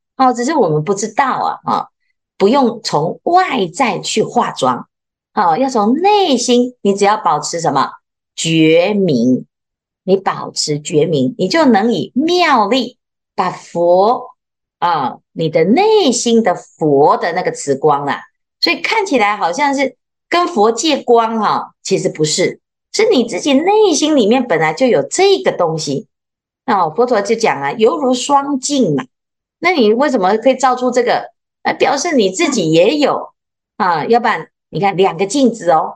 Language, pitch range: Chinese, 195-285 Hz